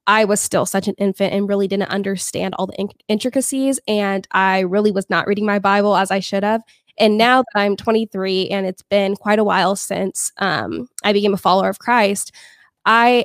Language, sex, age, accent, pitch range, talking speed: English, female, 20-39, American, 195-215 Hz, 210 wpm